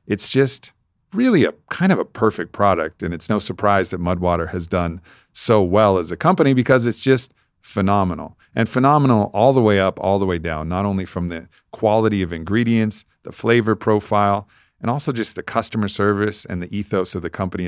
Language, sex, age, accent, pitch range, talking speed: English, male, 50-69, American, 95-115 Hz, 195 wpm